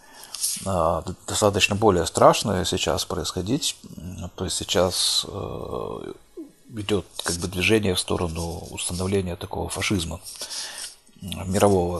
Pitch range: 90-115 Hz